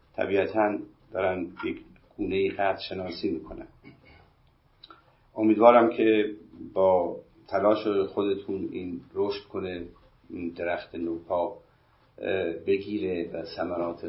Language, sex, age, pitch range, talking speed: Persian, male, 50-69, 95-130 Hz, 90 wpm